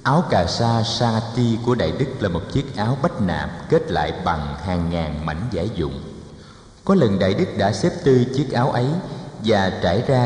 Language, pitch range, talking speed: Vietnamese, 90-125 Hz, 205 wpm